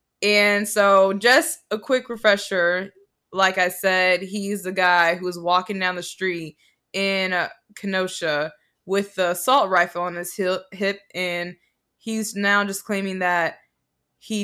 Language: English